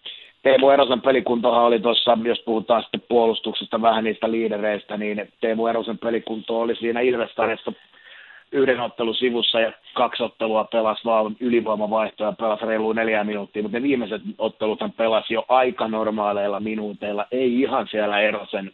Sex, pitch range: male, 105-115 Hz